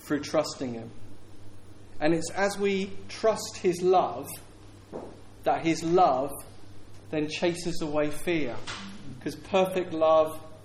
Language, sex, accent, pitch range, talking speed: English, male, British, 105-165 Hz, 115 wpm